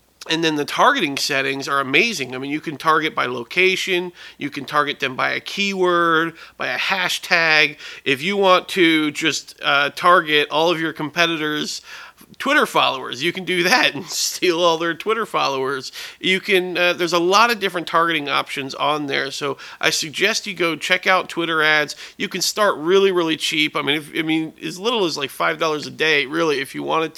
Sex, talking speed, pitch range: male, 200 wpm, 140-175 Hz